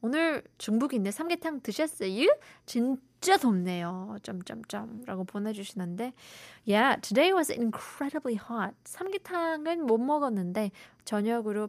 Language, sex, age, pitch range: Korean, female, 20-39, 200-270 Hz